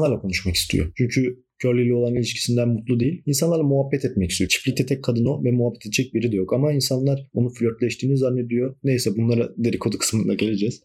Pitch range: 105-140 Hz